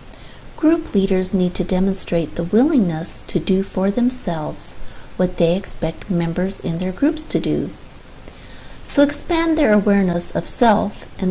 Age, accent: 40-59, American